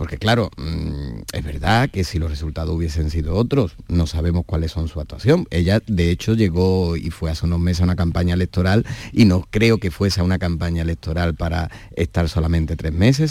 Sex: male